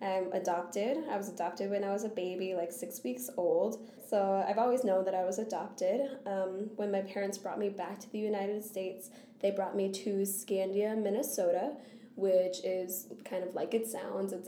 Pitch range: 185-230 Hz